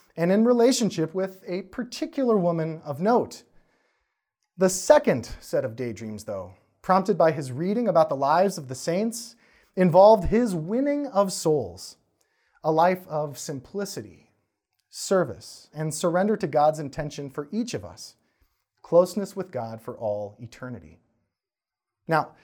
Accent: American